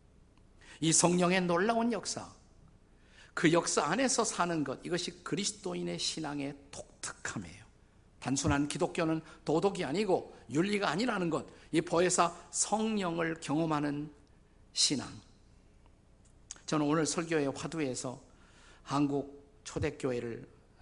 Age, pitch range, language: 50-69, 110-165 Hz, Korean